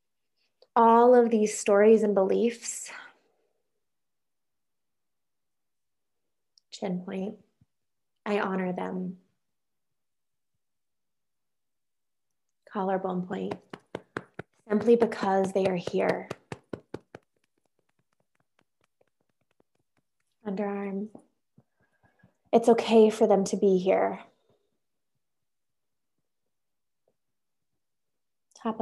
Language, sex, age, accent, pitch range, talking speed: English, female, 20-39, American, 195-220 Hz, 55 wpm